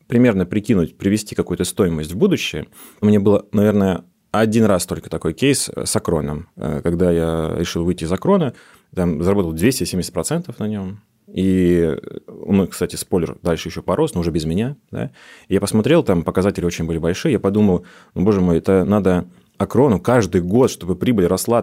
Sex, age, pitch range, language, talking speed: male, 30-49, 85-115 Hz, Russian, 170 wpm